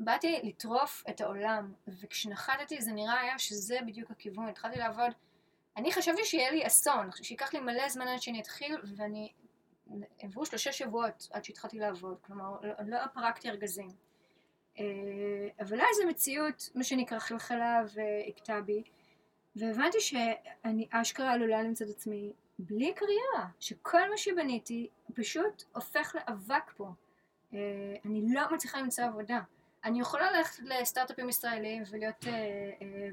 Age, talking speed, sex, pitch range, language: 20-39, 140 wpm, female, 210-265 Hz, Hebrew